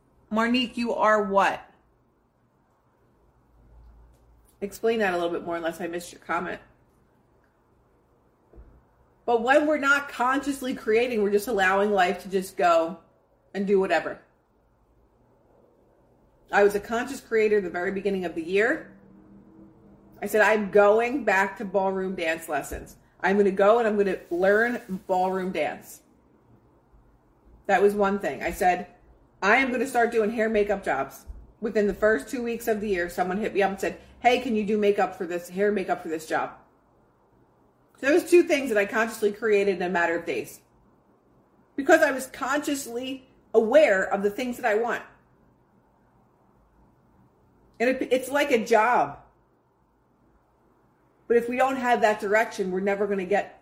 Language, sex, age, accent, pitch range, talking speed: English, female, 30-49, American, 190-235 Hz, 165 wpm